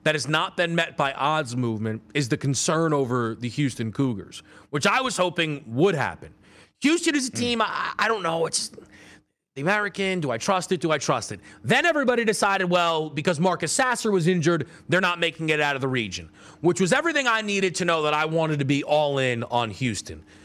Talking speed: 215 wpm